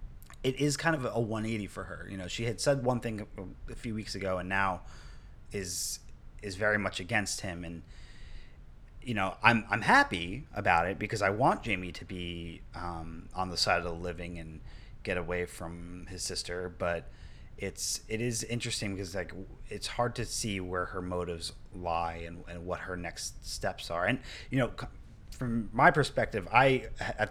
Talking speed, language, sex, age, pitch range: 185 wpm, English, male, 30-49, 90-115 Hz